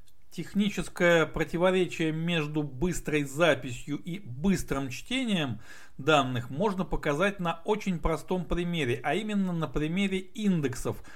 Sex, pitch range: male, 125-185 Hz